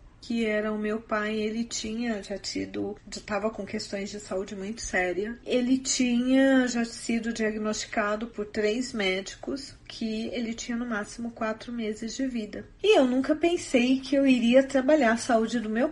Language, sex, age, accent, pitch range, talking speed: Portuguese, female, 40-59, Brazilian, 215-270 Hz, 170 wpm